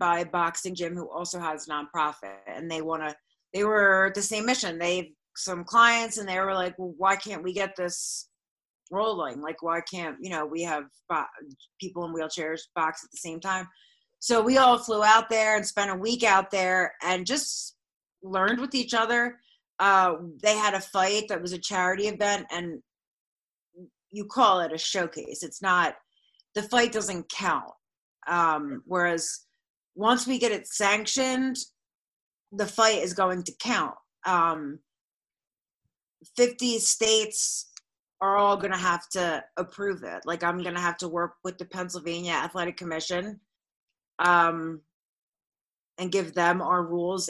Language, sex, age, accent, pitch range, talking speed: English, female, 30-49, American, 170-210 Hz, 165 wpm